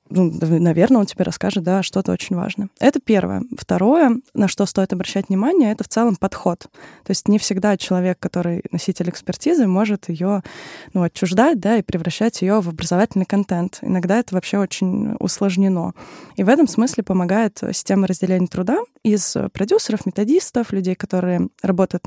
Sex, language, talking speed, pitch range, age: female, Russian, 160 wpm, 180-215 Hz, 20-39